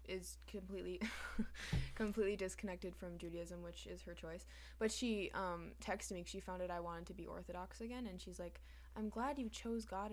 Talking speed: 190 wpm